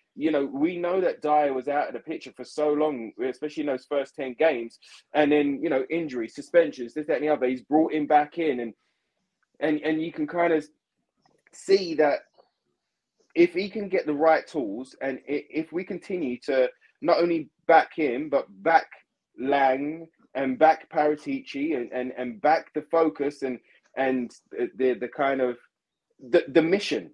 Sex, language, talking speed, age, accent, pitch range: male, English, 180 wpm, 20-39, British, 140-175 Hz